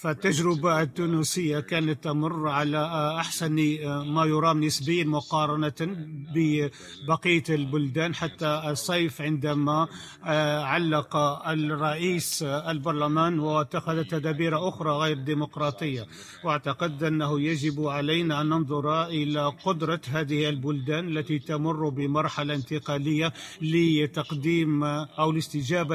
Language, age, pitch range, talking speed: Arabic, 50-69, 150-165 Hz, 90 wpm